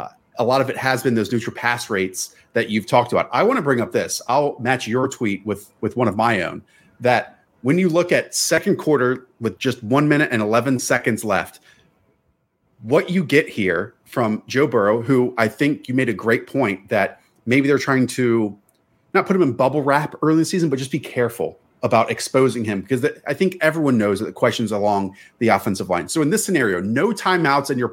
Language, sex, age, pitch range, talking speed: English, male, 30-49, 115-145 Hz, 220 wpm